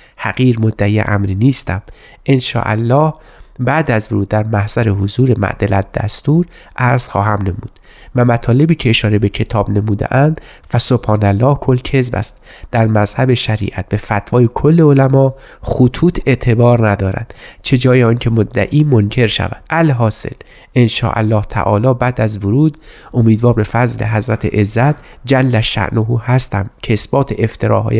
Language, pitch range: Persian, 105-130 Hz